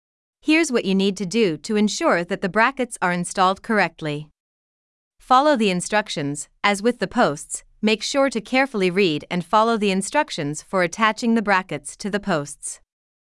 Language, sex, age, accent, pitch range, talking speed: English, female, 30-49, American, 175-230 Hz, 165 wpm